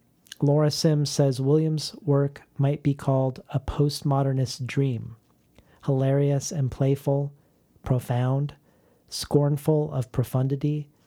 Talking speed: 100 wpm